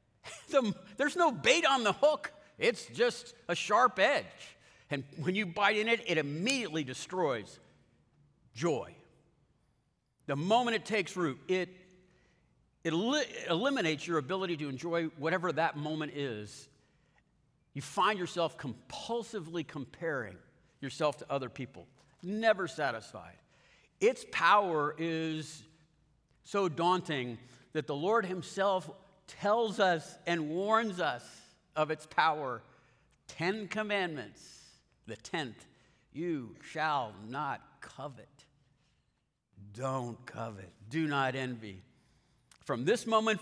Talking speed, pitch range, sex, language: 115 wpm, 145-205 Hz, male, English